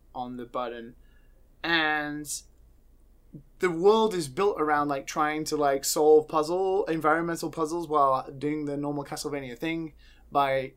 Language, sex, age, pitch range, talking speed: English, male, 20-39, 145-205 Hz, 135 wpm